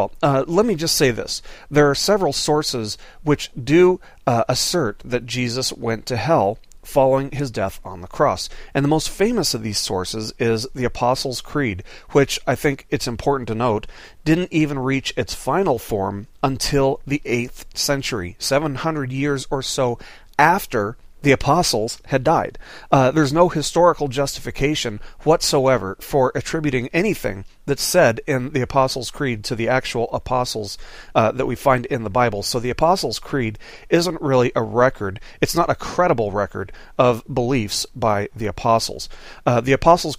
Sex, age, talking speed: male, 40-59, 165 wpm